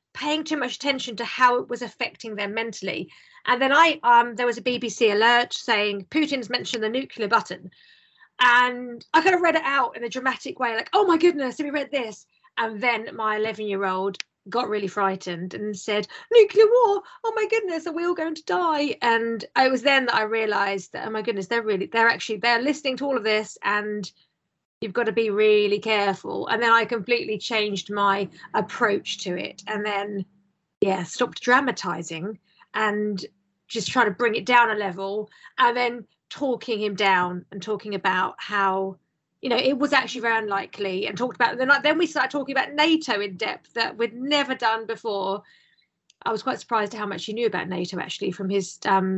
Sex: female